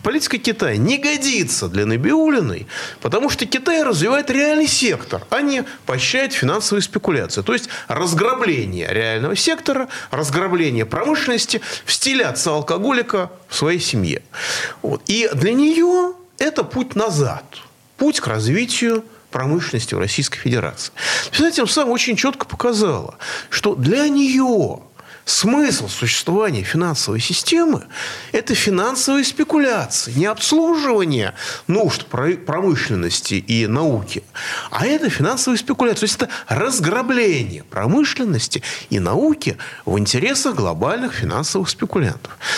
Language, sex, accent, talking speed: Russian, male, native, 115 wpm